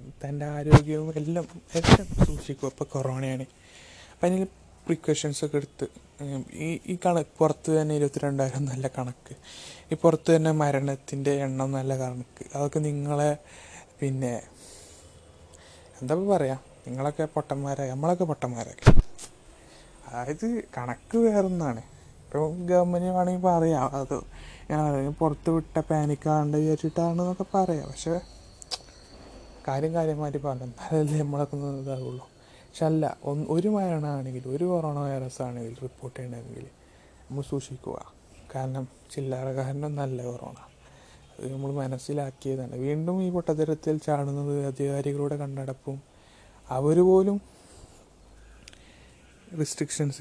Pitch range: 130-155 Hz